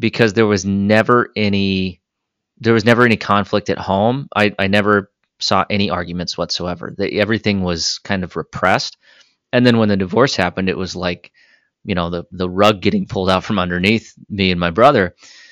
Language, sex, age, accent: English, male, 30-49, American